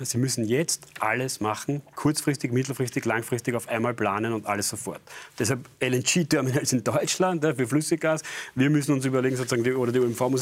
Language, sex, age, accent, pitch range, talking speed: German, male, 40-59, German, 125-150 Hz, 180 wpm